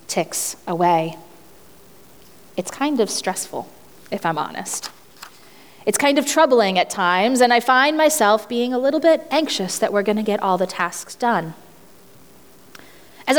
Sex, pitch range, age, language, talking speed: female, 185-255 Hz, 30-49, English, 150 wpm